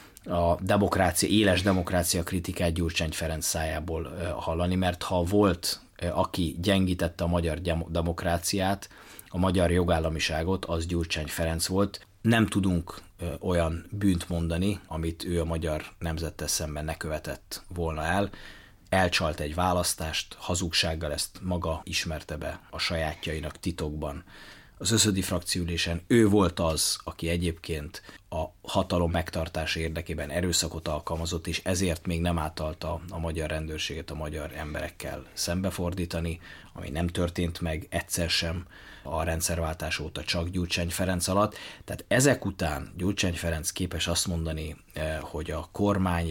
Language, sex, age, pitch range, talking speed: Hungarian, male, 30-49, 80-95 Hz, 130 wpm